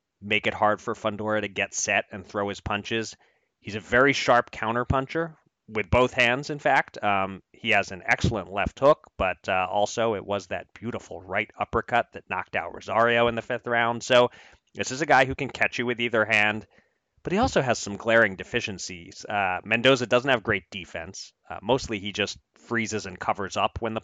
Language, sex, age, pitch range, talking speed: English, male, 30-49, 100-120 Hz, 205 wpm